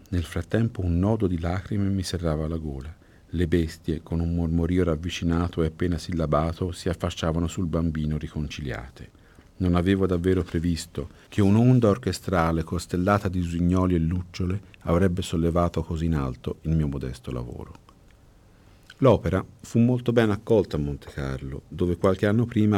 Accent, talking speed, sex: native, 150 wpm, male